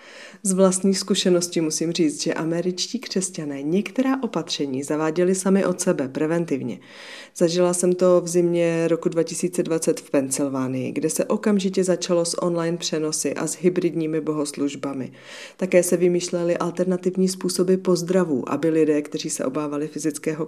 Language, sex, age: Czech, female, 40-59